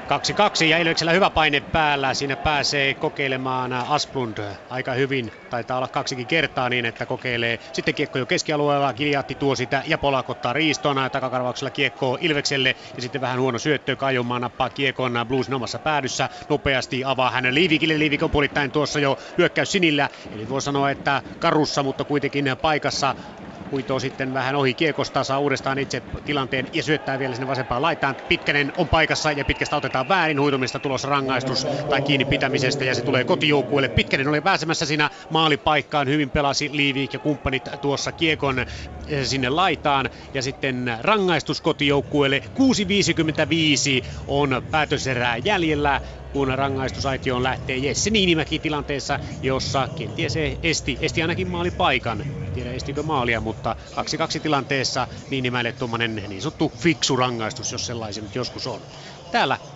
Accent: native